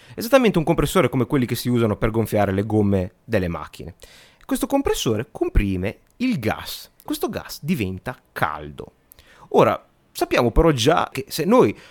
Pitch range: 110-180 Hz